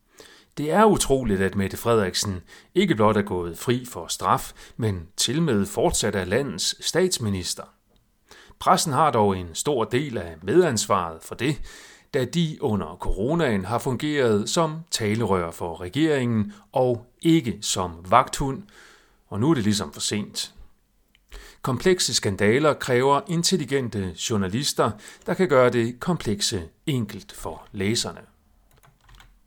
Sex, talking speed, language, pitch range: male, 130 wpm, Danish, 100-140 Hz